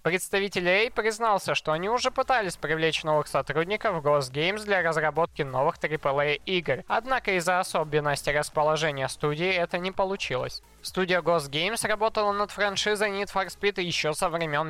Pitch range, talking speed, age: 150-205 Hz, 155 wpm, 20-39